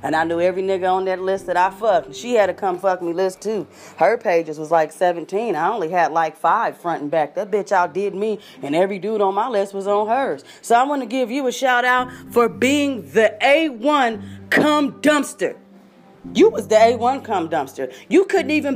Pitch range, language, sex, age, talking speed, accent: 180-255 Hz, English, female, 30-49, 220 wpm, American